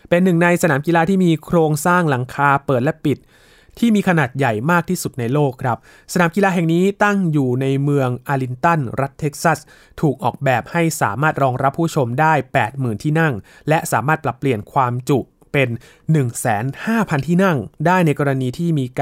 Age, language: 20-39, Thai